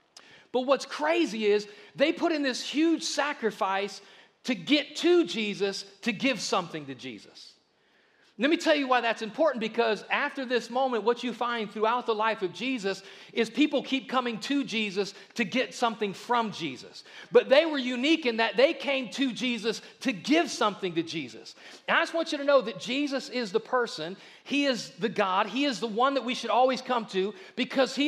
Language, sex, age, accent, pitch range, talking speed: English, male, 40-59, American, 210-270 Hz, 195 wpm